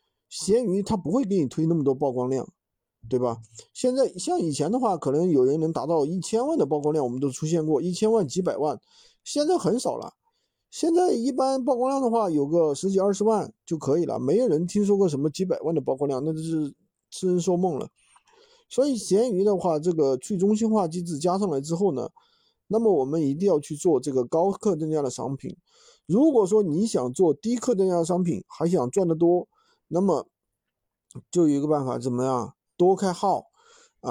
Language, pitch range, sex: Chinese, 150-220 Hz, male